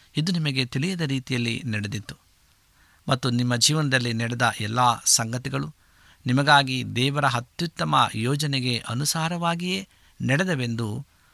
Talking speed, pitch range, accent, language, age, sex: 90 wpm, 110-140 Hz, native, Kannada, 60-79, male